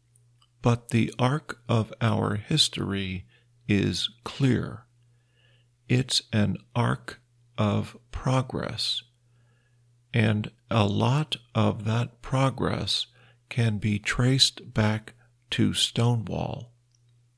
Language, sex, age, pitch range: Thai, male, 50-69, 110-125 Hz